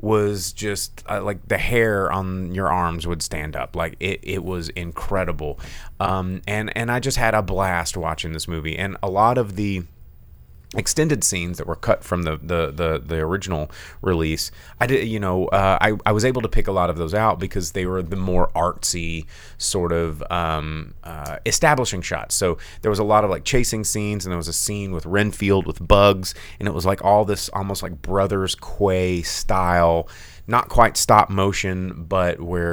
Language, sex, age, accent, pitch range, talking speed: English, male, 30-49, American, 85-100 Hz, 200 wpm